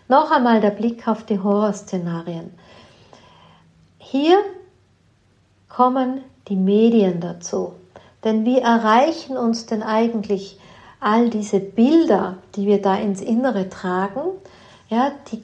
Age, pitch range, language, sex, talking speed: 50-69, 200-250 Hz, German, female, 110 wpm